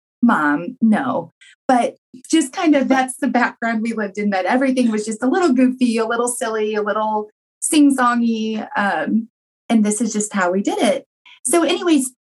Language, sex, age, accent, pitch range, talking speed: English, female, 20-39, American, 200-260 Hz, 170 wpm